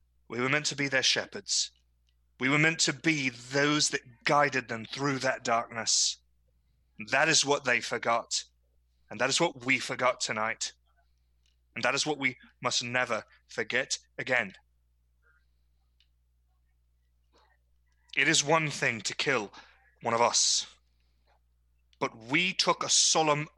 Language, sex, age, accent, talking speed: English, male, 30-49, British, 135 wpm